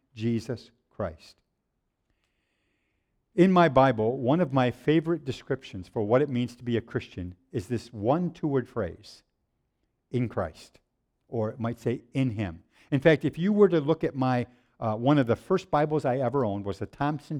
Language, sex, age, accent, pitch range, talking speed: English, male, 50-69, American, 120-170 Hz, 180 wpm